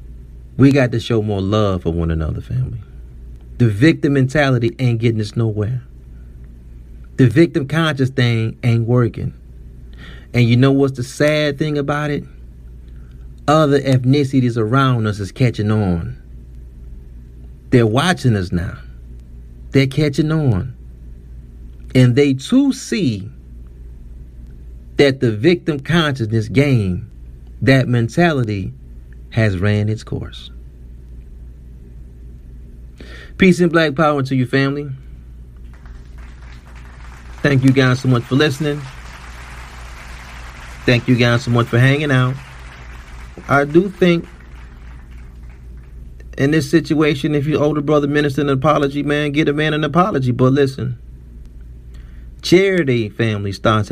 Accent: American